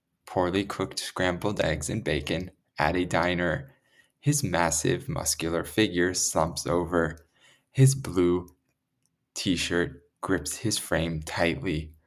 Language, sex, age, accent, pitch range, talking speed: English, male, 20-39, American, 85-125 Hz, 110 wpm